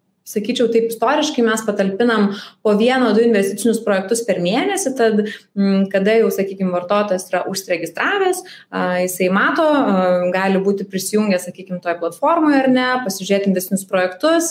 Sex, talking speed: female, 135 wpm